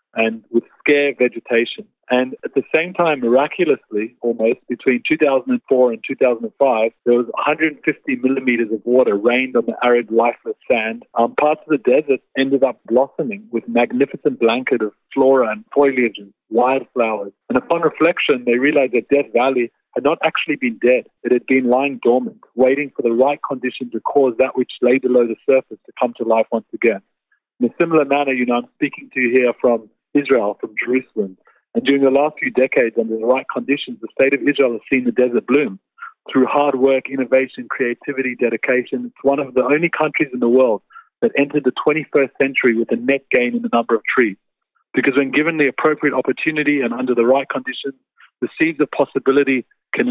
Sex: male